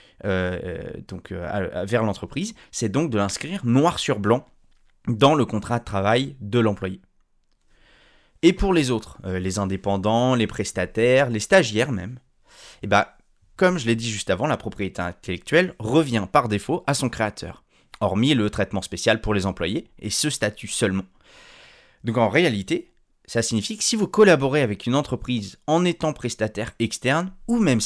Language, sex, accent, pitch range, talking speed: French, male, French, 100-140 Hz, 160 wpm